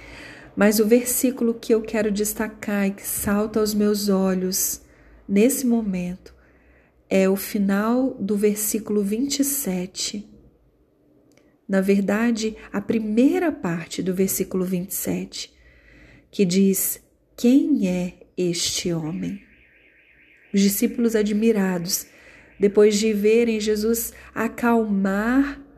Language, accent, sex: Portuguese, Brazilian, female